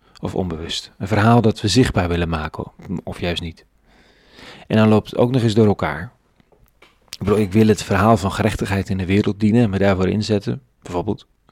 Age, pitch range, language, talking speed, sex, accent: 40-59, 95-115 Hz, Dutch, 190 wpm, male, Dutch